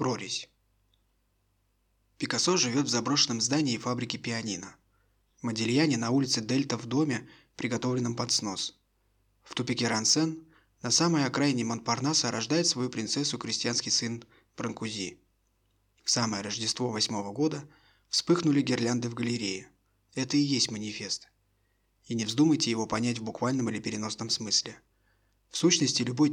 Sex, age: male, 20-39